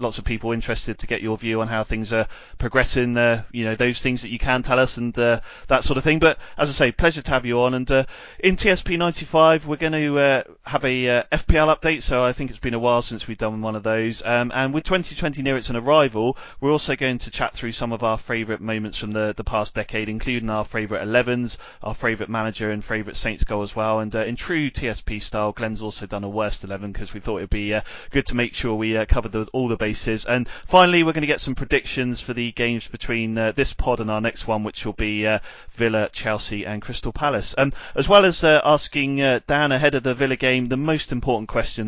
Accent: British